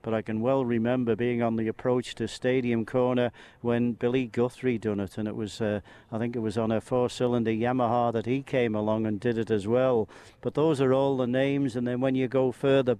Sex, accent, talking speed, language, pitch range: male, British, 230 wpm, English, 115-130 Hz